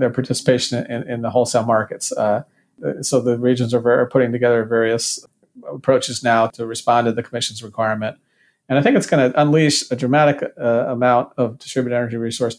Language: English